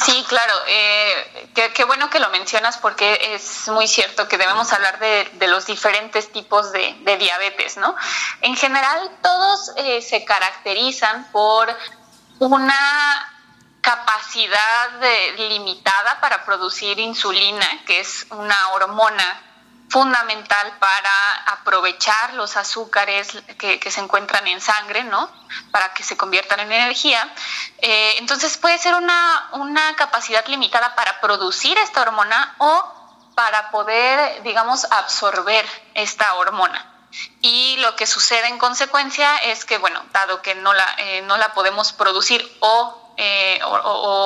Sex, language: female, Spanish